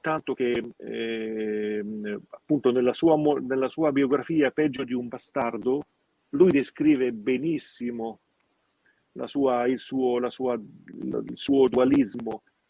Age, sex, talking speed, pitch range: 40-59, male, 125 wpm, 120-150 Hz